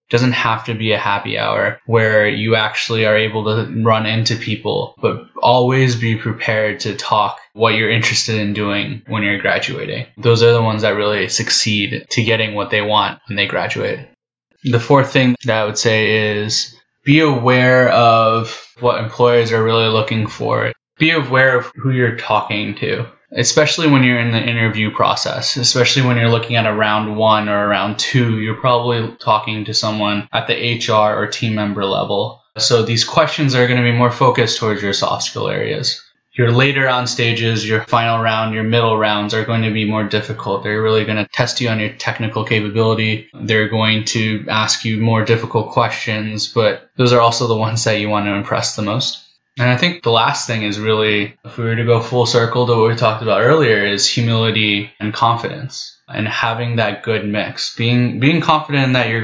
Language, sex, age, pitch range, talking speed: English, male, 10-29, 110-120 Hz, 200 wpm